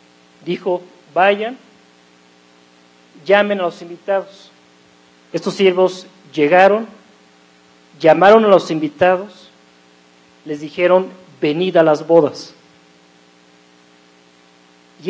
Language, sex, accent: Spanish, male, Mexican